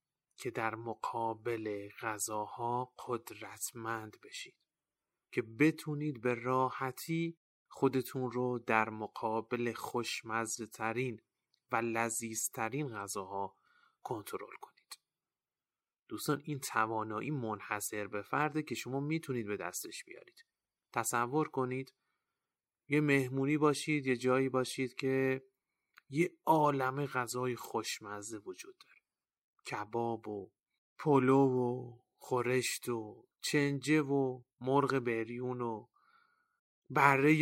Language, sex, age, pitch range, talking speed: Persian, male, 30-49, 115-140 Hz, 95 wpm